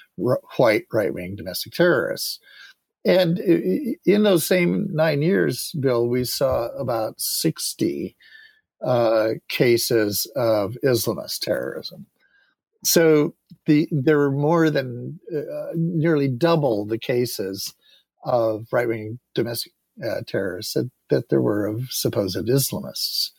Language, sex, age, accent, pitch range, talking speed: English, male, 50-69, American, 120-165 Hz, 120 wpm